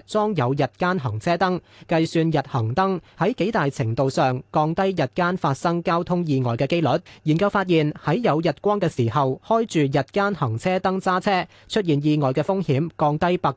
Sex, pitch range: male, 135-185 Hz